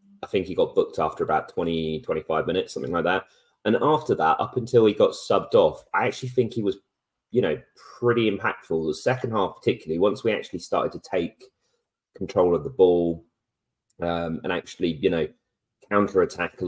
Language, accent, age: English, British, 30-49